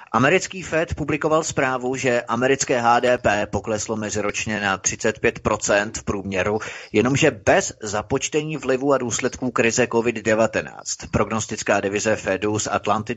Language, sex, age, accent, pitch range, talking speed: Czech, male, 30-49, native, 105-130 Hz, 120 wpm